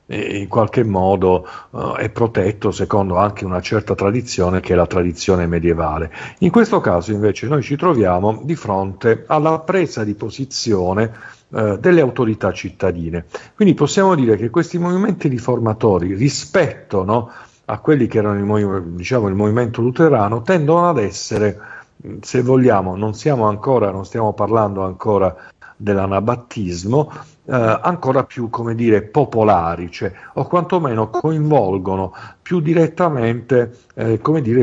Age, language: 50-69, Italian